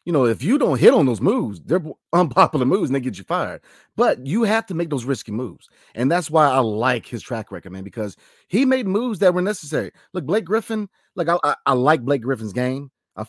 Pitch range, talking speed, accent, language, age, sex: 125-185 Hz, 240 wpm, American, English, 30-49, male